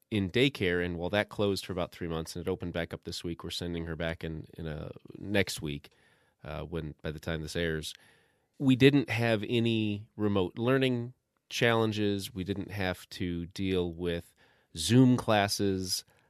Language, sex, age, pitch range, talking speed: English, male, 30-49, 85-100 Hz, 175 wpm